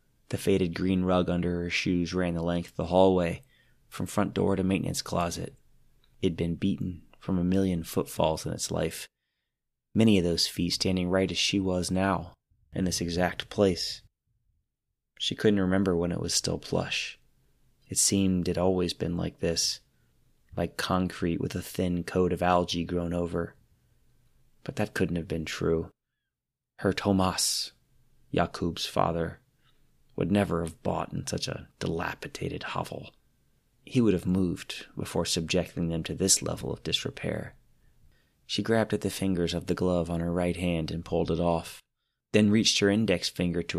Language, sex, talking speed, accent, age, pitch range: English, male, 165 wpm, American, 30-49, 85-95 Hz